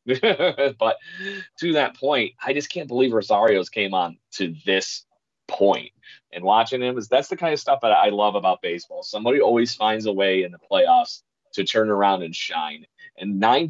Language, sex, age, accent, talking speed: English, male, 30-49, American, 190 wpm